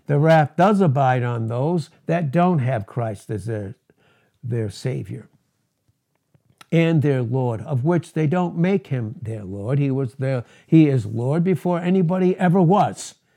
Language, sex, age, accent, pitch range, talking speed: English, male, 60-79, American, 130-175 Hz, 155 wpm